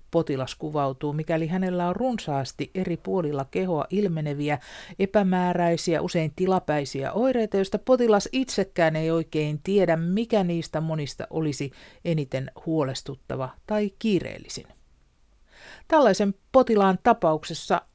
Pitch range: 140-195 Hz